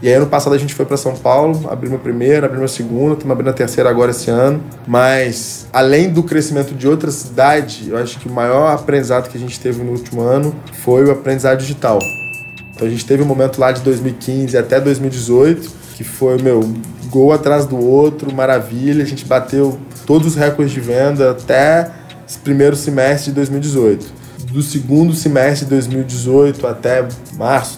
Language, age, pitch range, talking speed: Portuguese, 20-39, 125-145 Hz, 190 wpm